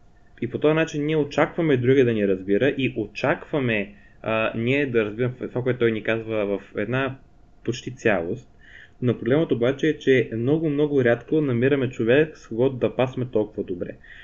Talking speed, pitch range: 175 wpm, 110-140 Hz